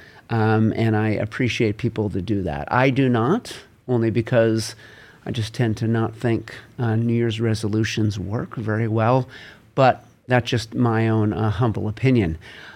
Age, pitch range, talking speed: 50-69, 110-125 Hz, 160 wpm